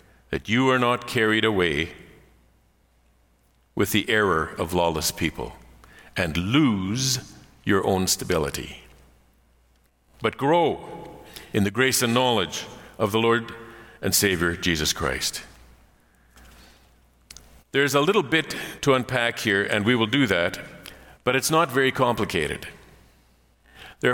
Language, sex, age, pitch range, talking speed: English, male, 50-69, 90-140 Hz, 120 wpm